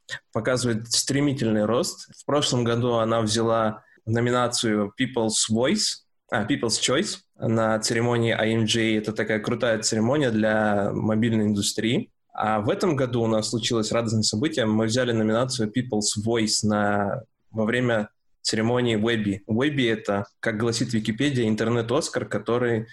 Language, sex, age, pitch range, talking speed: Russian, male, 20-39, 110-120 Hz, 130 wpm